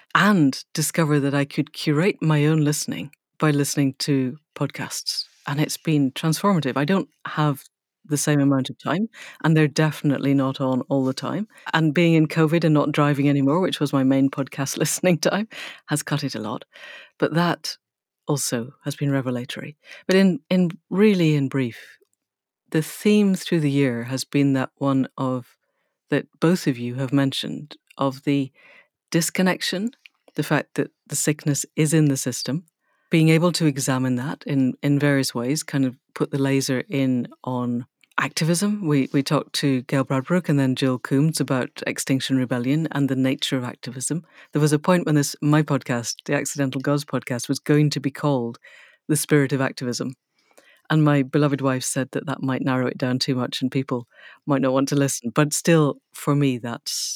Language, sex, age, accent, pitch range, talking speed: English, female, 50-69, British, 135-155 Hz, 185 wpm